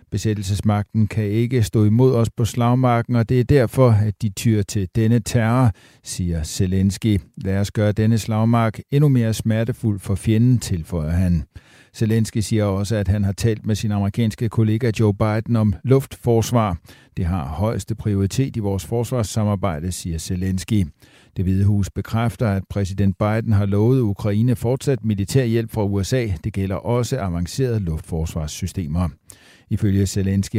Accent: native